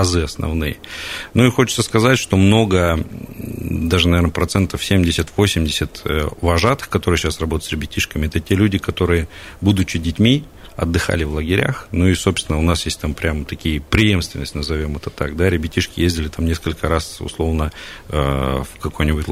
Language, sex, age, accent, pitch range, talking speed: Russian, male, 40-59, native, 80-100 Hz, 150 wpm